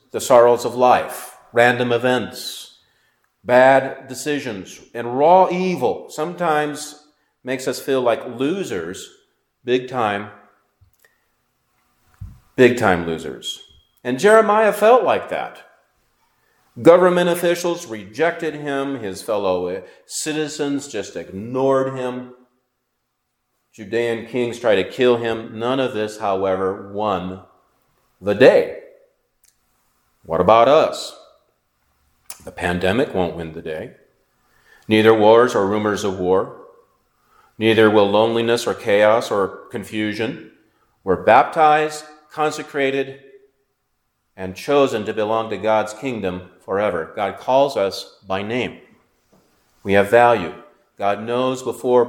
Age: 40-59